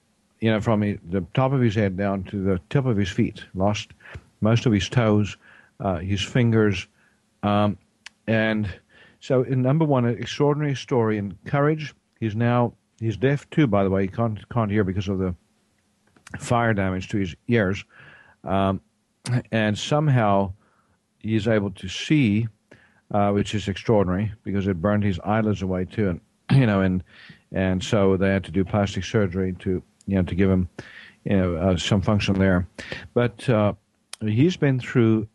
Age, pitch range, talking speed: 50-69, 100-125 Hz, 170 wpm